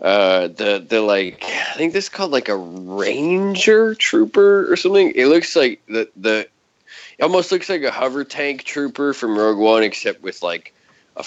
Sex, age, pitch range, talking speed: male, 20-39, 95-135 Hz, 185 wpm